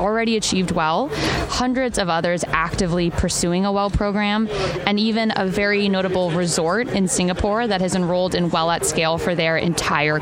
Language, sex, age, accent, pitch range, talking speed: English, female, 20-39, American, 170-210 Hz, 170 wpm